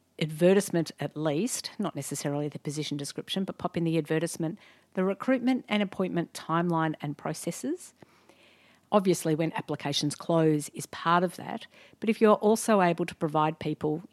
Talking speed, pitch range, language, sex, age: 155 wpm, 155-205 Hz, English, female, 50-69